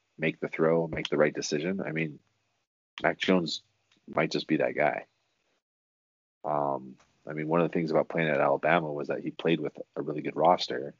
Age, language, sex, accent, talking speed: 30-49, English, male, American, 195 wpm